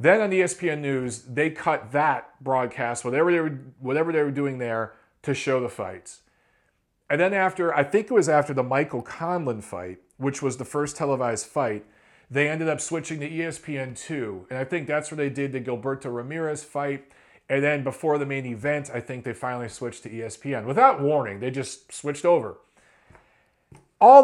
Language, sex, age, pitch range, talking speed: English, male, 40-59, 130-185 Hz, 185 wpm